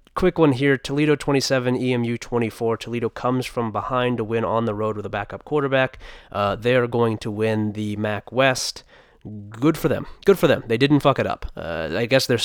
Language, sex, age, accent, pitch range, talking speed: English, male, 20-39, American, 105-125 Hz, 205 wpm